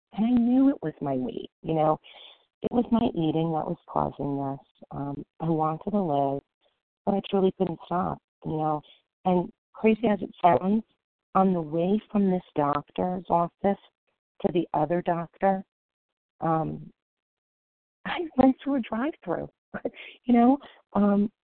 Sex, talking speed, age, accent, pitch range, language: female, 155 wpm, 40-59, American, 145-200 Hz, English